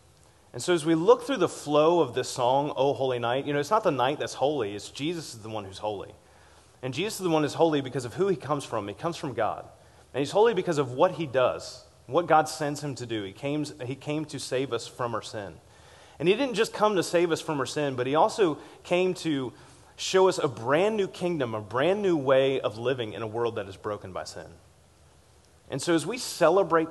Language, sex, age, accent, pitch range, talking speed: English, male, 30-49, American, 120-165 Hz, 245 wpm